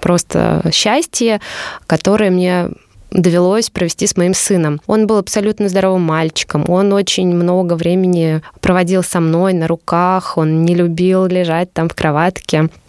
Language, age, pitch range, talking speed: Russian, 20-39, 165-200 Hz, 140 wpm